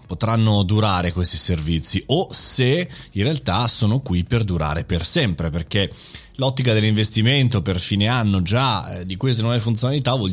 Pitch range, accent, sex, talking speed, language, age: 100-135 Hz, native, male, 155 wpm, Italian, 30-49